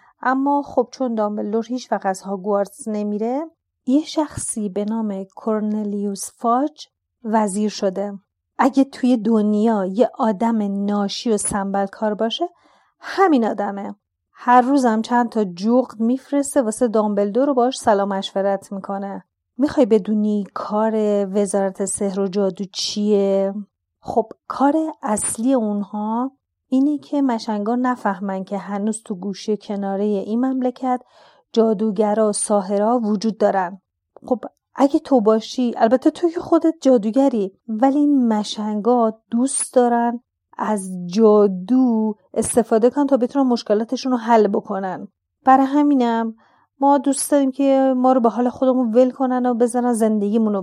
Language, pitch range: Persian, 205-255 Hz